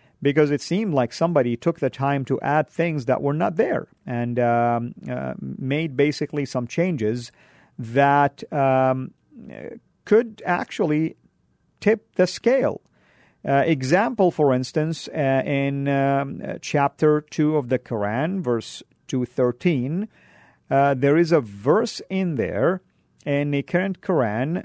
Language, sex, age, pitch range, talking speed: English, male, 50-69, 130-170 Hz, 130 wpm